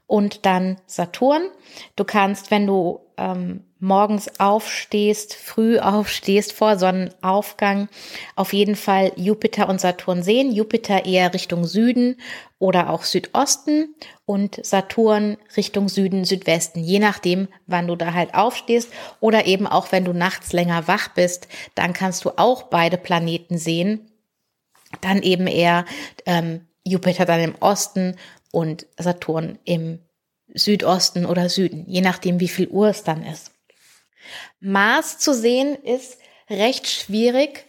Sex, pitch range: female, 185-230 Hz